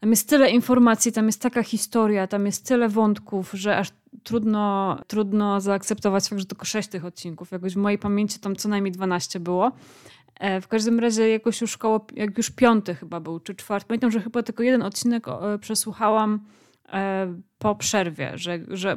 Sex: female